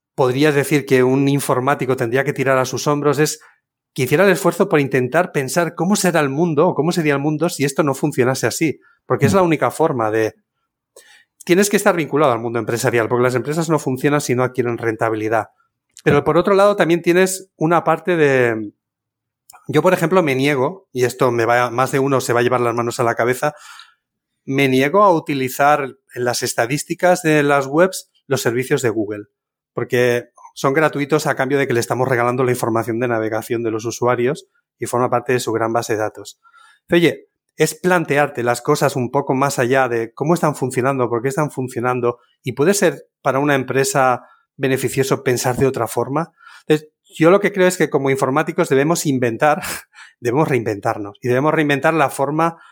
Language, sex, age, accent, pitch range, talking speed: Spanish, male, 30-49, Spanish, 125-155 Hz, 195 wpm